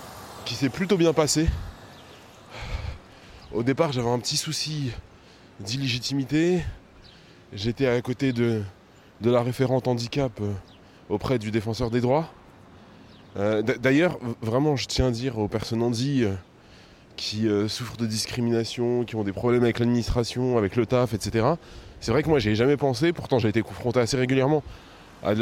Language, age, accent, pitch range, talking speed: French, 20-39, French, 100-130 Hz, 155 wpm